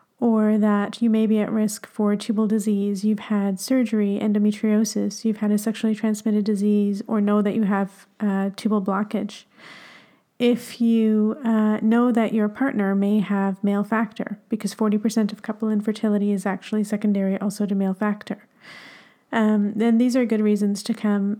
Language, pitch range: English, 205-225 Hz